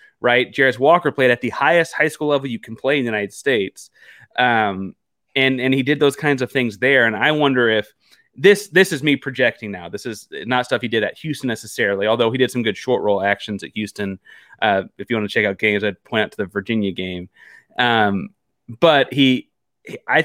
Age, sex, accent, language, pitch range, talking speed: 30-49, male, American, English, 110-140 Hz, 220 wpm